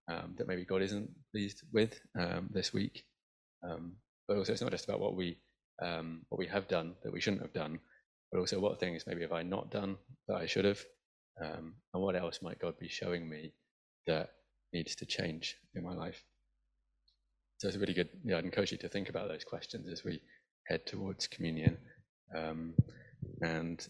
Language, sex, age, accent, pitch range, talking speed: English, male, 20-39, British, 80-100 Hz, 200 wpm